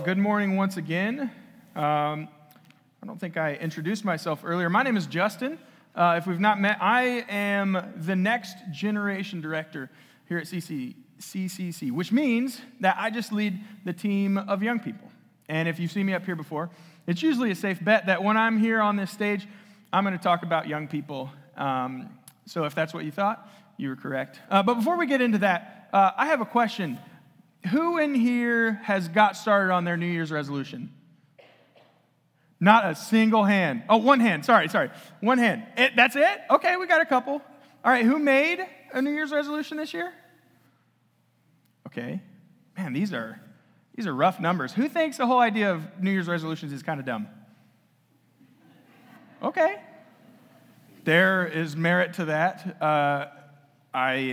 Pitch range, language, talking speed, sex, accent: 170-235 Hz, English, 175 wpm, male, American